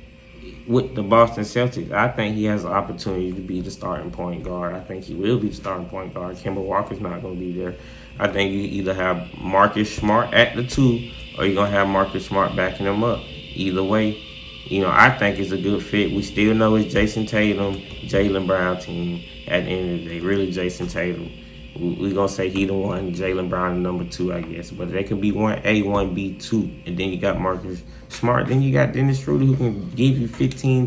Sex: male